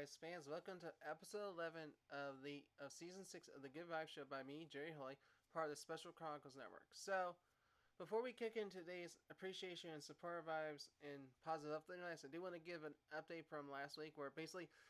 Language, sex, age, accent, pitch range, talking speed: English, male, 20-39, American, 150-195 Hz, 200 wpm